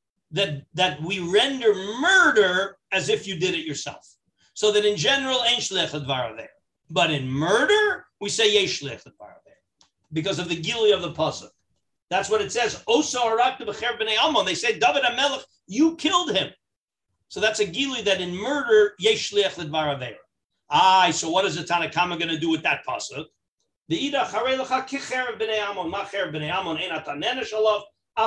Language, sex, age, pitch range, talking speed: English, male, 50-69, 170-235 Hz, 120 wpm